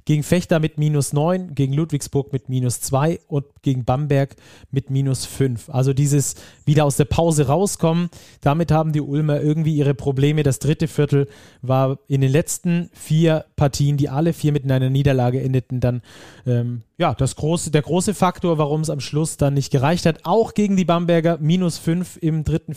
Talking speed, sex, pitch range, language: 185 wpm, male, 135-160 Hz, German